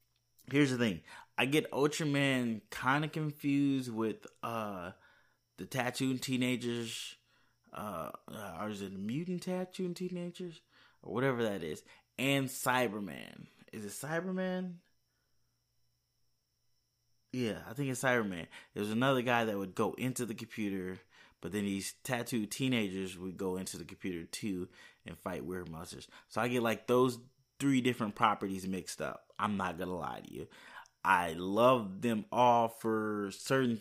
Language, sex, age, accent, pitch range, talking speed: English, male, 20-39, American, 105-130 Hz, 145 wpm